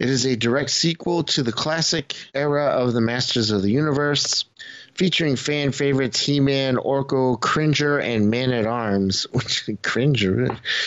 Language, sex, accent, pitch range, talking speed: English, male, American, 115-140 Hz, 135 wpm